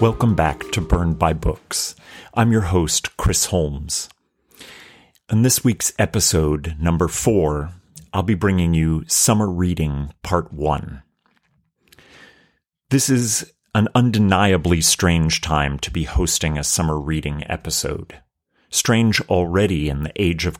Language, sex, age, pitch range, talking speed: English, male, 40-59, 80-95 Hz, 130 wpm